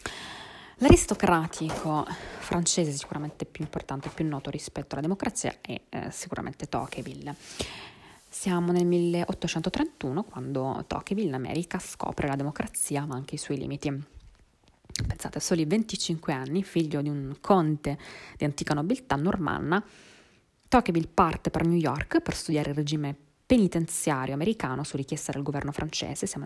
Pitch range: 145-175 Hz